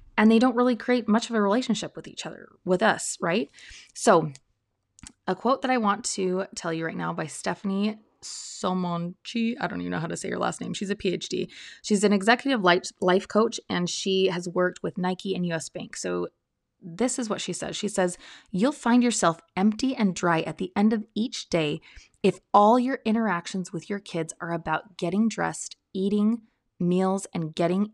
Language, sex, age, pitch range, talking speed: English, female, 20-39, 175-225 Hz, 195 wpm